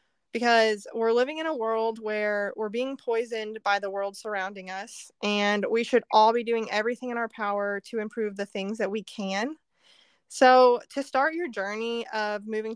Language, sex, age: English, female, 20-39